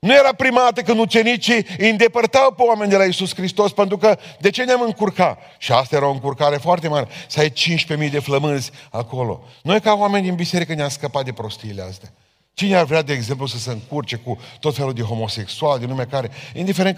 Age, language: 40-59, Romanian